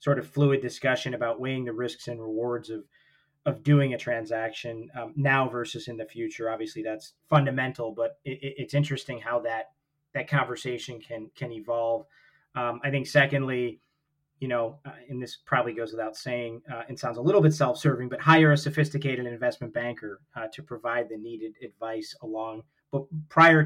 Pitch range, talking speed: 120-145 Hz, 180 wpm